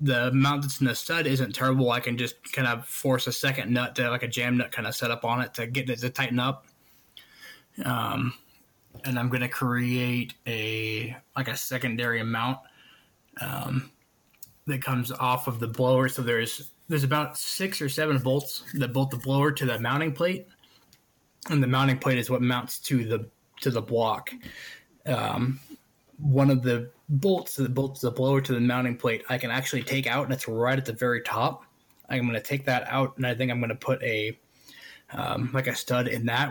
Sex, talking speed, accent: male, 205 wpm, American